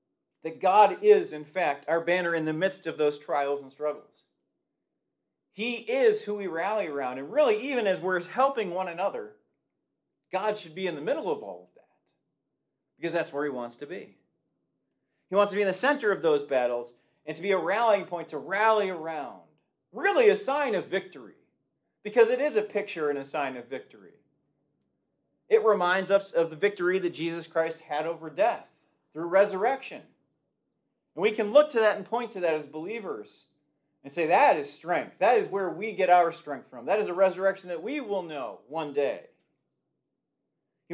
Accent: American